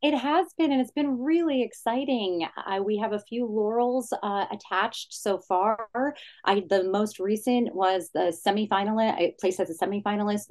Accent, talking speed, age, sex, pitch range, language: American, 170 wpm, 30-49, female, 160-220 Hz, English